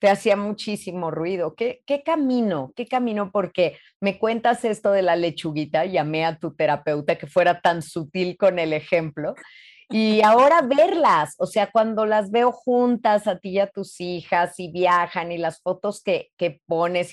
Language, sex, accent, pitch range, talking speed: Spanish, female, Mexican, 170-220 Hz, 170 wpm